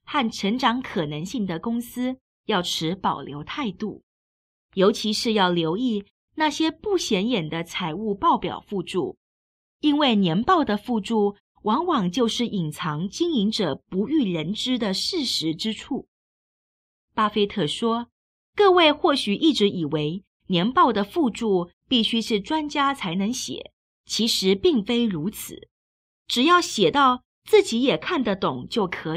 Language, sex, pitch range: Chinese, female, 185-275 Hz